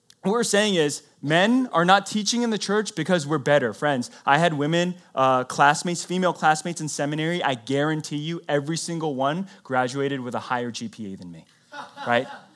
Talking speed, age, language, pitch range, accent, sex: 180 wpm, 20-39, English, 135-180 Hz, American, male